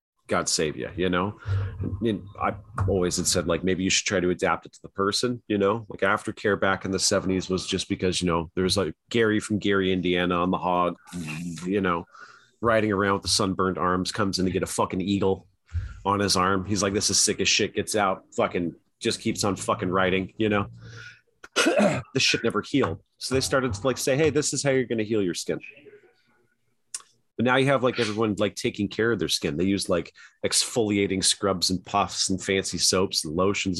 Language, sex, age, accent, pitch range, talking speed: English, male, 30-49, American, 90-110 Hz, 215 wpm